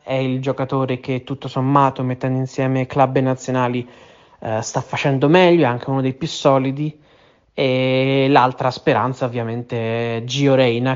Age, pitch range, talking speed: 20-39, 130-145 Hz, 150 wpm